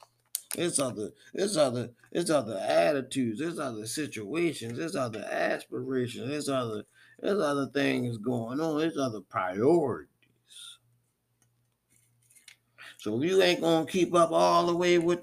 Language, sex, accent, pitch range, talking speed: English, male, American, 115-160 Hz, 130 wpm